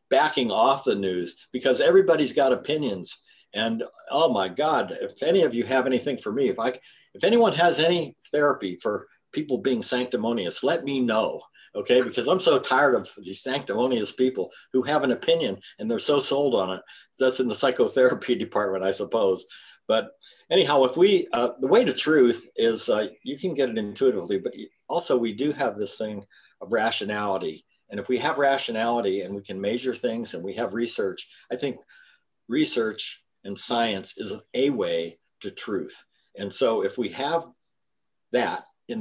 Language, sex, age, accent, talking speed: English, male, 60-79, American, 180 wpm